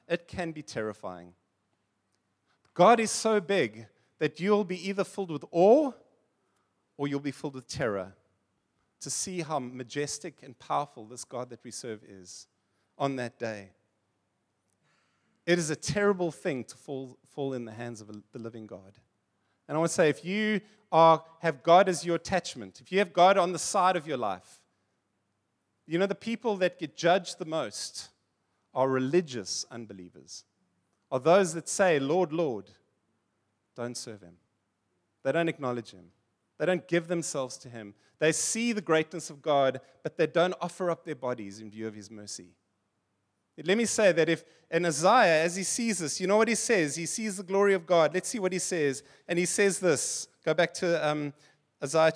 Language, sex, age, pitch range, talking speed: German, male, 30-49, 110-175 Hz, 185 wpm